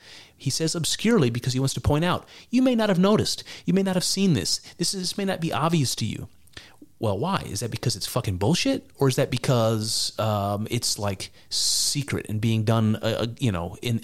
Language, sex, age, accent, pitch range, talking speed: English, male, 30-49, American, 110-150 Hz, 220 wpm